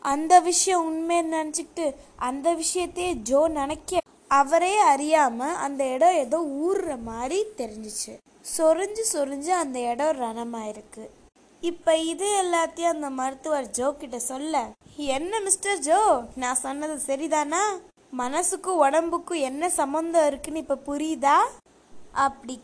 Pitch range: 265-355 Hz